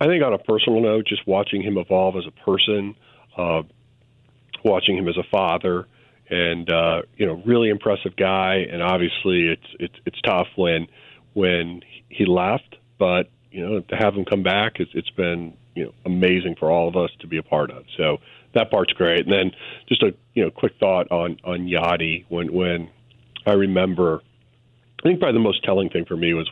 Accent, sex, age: American, male, 40-59